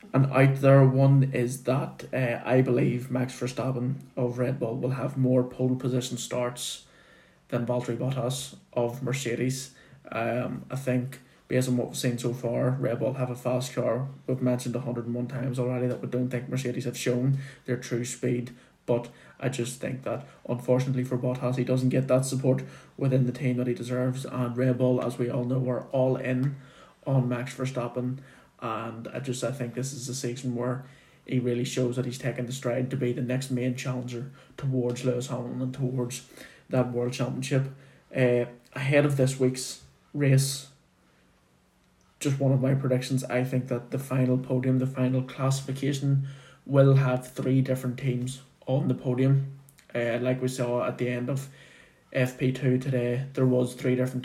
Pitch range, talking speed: 125-130 Hz, 180 wpm